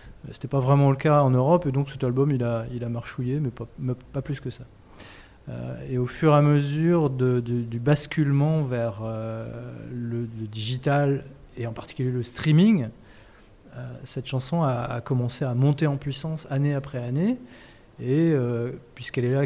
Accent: French